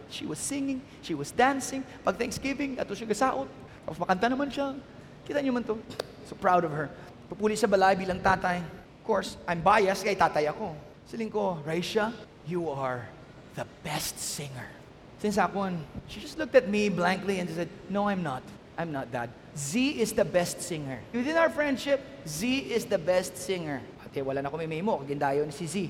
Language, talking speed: English, 185 wpm